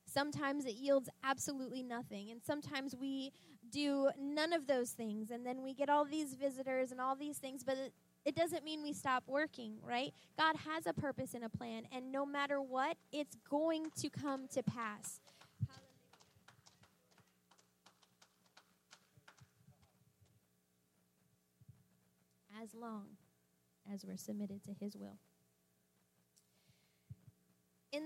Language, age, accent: English, 10-29, American